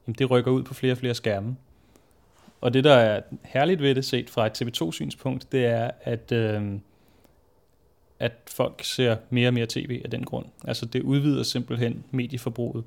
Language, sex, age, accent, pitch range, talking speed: Danish, male, 30-49, native, 115-130 Hz, 180 wpm